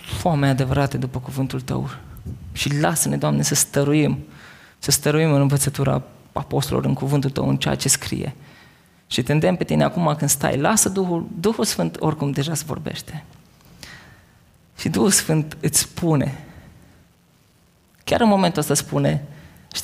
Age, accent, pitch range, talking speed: 20-39, native, 130-155 Hz, 145 wpm